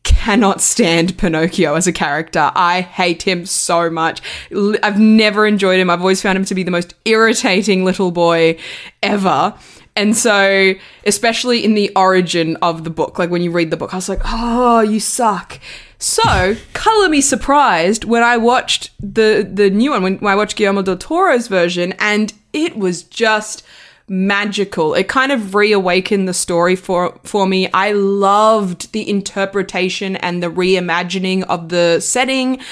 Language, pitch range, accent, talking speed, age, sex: English, 180-220 Hz, Australian, 165 wpm, 20-39, female